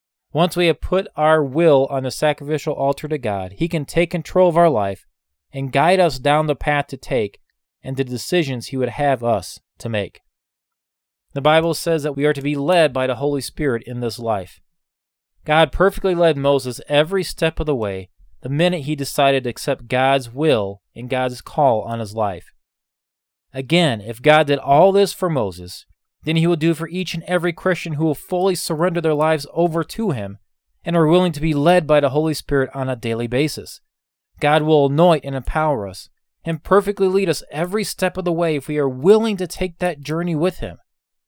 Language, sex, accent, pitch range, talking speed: English, male, American, 135-180 Hz, 205 wpm